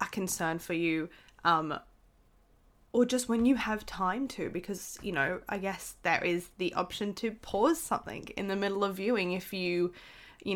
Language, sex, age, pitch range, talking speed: English, female, 20-39, 175-215 Hz, 180 wpm